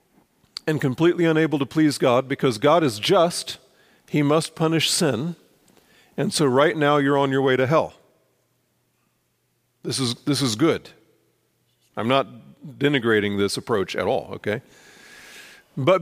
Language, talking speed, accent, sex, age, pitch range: English, 140 wpm, American, male, 40-59, 130-170 Hz